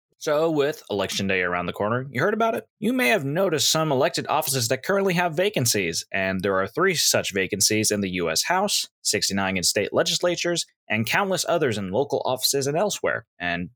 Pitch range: 105-145 Hz